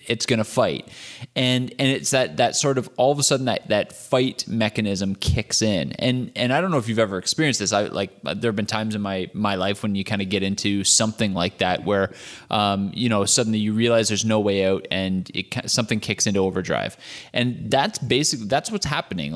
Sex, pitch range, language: male, 105-130 Hz, English